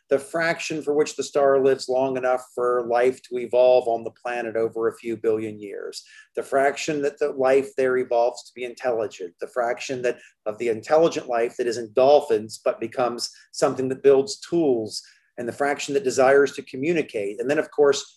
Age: 40-59